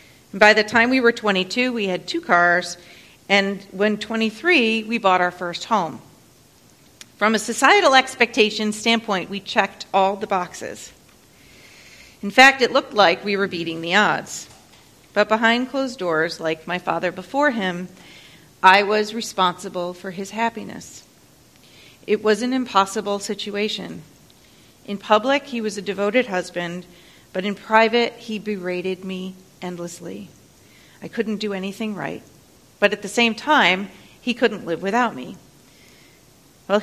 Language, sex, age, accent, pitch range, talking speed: English, female, 40-59, American, 180-225 Hz, 145 wpm